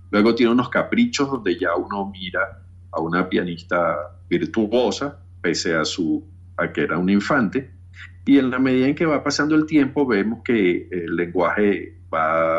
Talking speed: 165 wpm